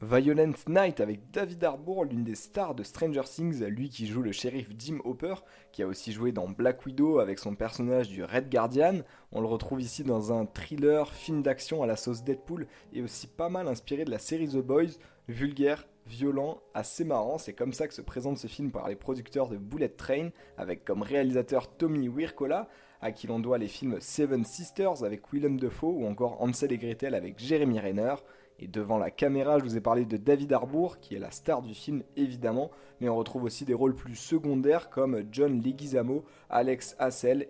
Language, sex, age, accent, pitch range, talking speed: French, male, 20-39, French, 120-150 Hz, 205 wpm